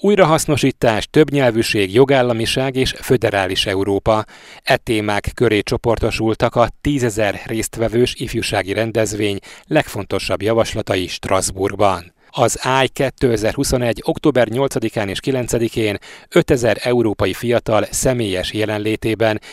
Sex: male